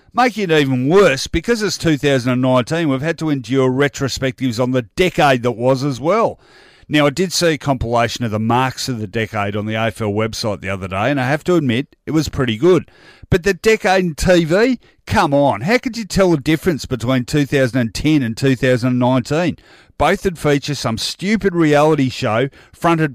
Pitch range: 125-165 Hz